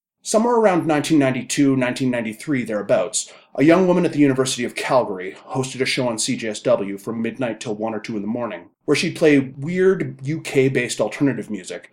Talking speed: 170 wpm